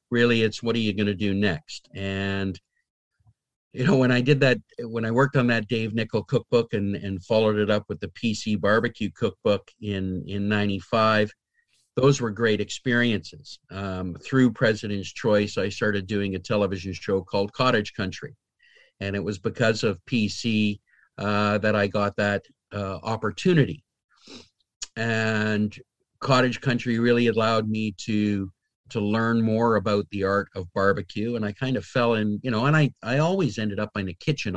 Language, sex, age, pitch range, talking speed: English, male, 50-69, 100-115 Hz, 170 wpm